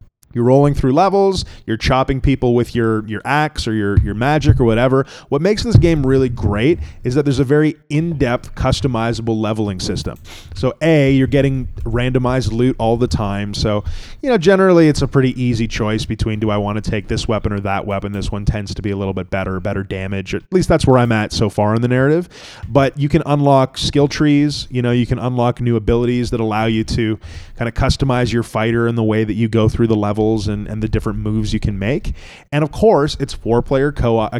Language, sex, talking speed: English, male, 230 wpm